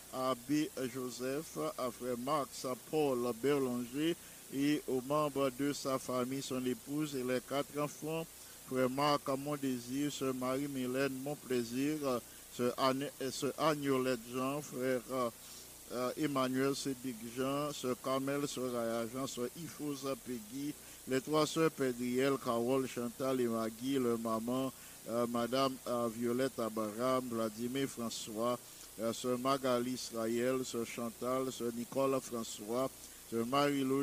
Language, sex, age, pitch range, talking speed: English, male, 50-69, 120-135 Hz, 135 wpm